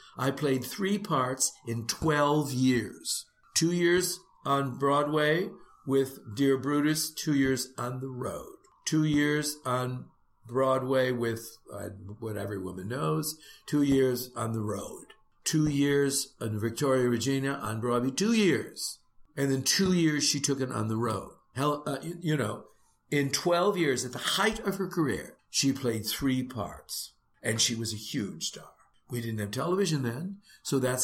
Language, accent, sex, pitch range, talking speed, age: English, American, male, 115-150 Hz, 160 wpm, 60-79